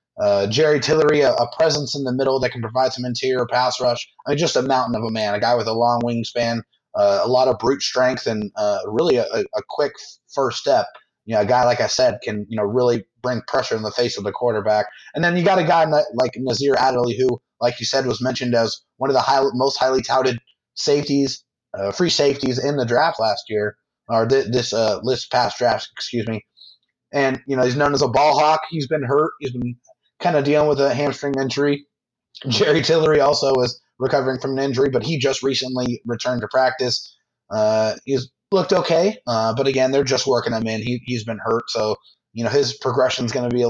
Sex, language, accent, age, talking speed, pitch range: male, English, American, 30-49, 230 wpm, 120-140 Hz